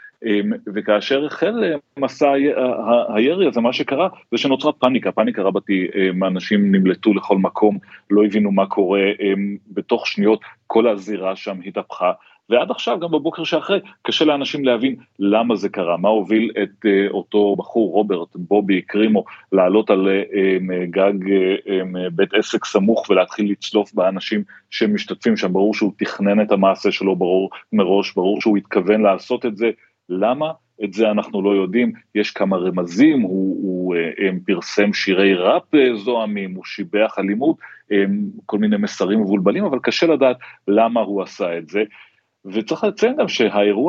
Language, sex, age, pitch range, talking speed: Hebrew, male, 30-49, 95-120 Hz, 145 wpm